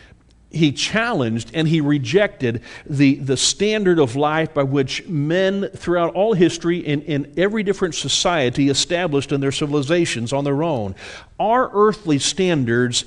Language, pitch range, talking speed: English, 125-170 Hz, 140 wpm